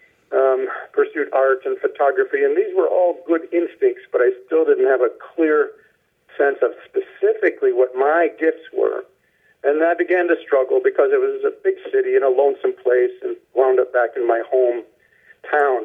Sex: male